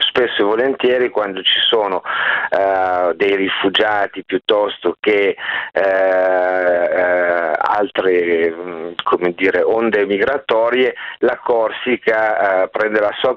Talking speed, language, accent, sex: 110 wpm, Italian, native, male